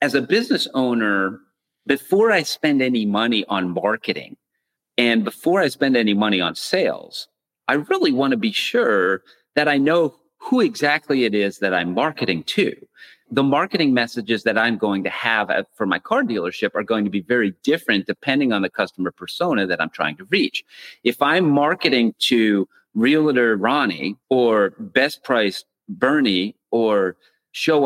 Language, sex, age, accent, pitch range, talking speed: English, male, 40-59, American, 105-150 Hz, 160 wpm